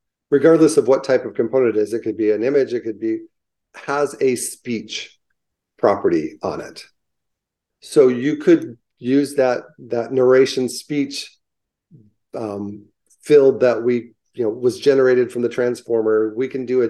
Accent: American